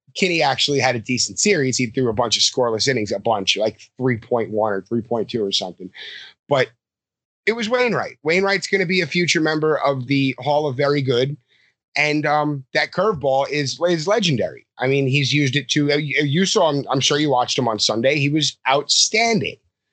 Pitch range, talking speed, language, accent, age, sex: 115-150 Hz, 195 wpm, English, American, 30-49, male